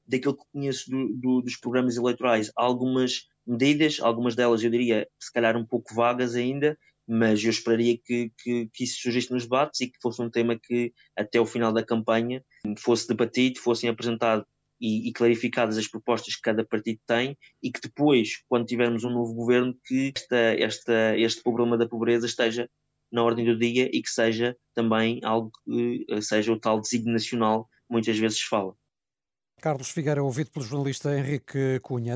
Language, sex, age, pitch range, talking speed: Portuguese, male, 20-39, 120-155 Hz, 175 wpm